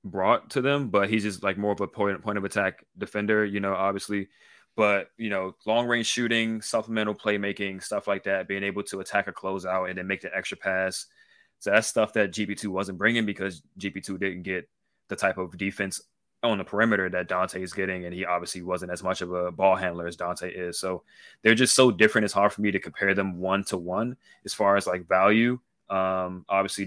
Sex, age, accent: male, 20-39, American